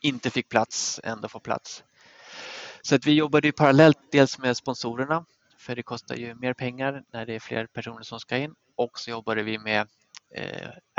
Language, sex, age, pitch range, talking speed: Swedish, male, 20-39, 115-135 Hz, 190 wpm